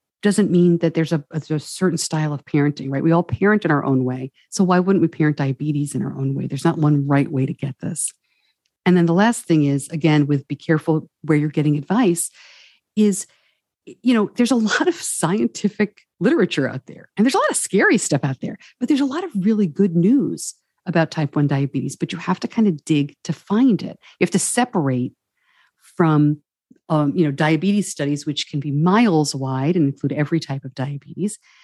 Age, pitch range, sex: 50-69, 150-205 Hz, female